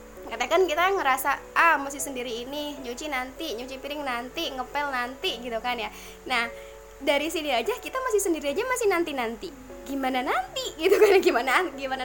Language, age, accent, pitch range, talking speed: Indonesian, 20-39, native, 250-330 Hz, 170 wpm